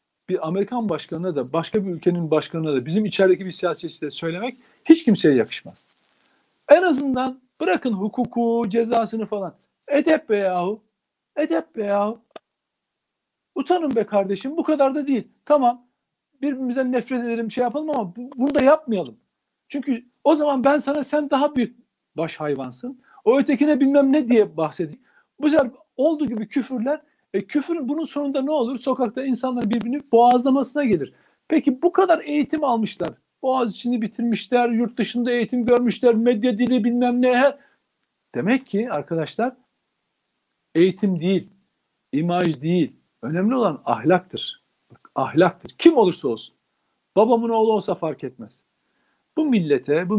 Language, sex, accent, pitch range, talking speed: Turkish, male, native, 185-275 Hz, 140 wpm